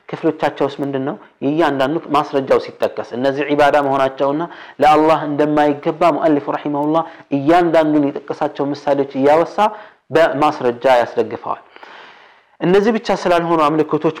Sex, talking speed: male, 125 wpm